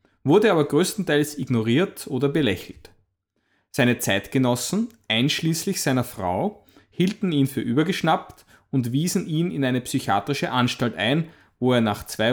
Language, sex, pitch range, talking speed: English, male, 110-165 Hz, 130 wpm